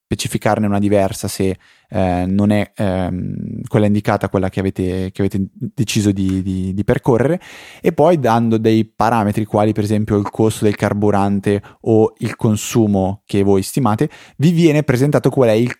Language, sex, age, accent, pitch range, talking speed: Italian, male, 20-39, native, 100-115 Hz, 160 wpm